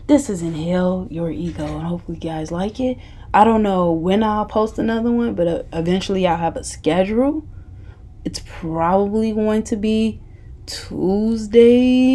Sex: female